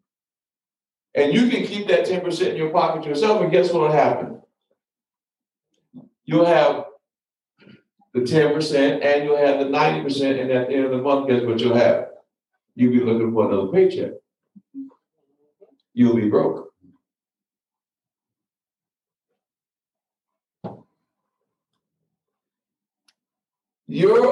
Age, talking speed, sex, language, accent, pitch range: 60-79, 110 wpm, male, English, American, 125-190 Hz